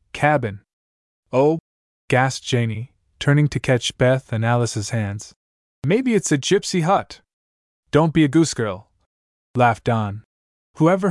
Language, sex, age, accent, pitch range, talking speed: English, male, 20-39, American, 105-150 Hz, 130 wpm